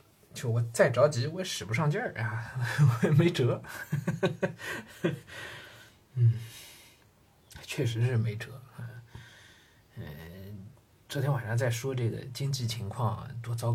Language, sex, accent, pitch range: Chinese, male, native, 115-145 Hz